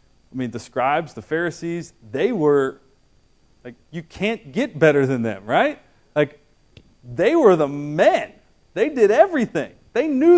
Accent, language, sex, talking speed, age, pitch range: American, English, male, 150 wpm, 40-59, 150-220 Hz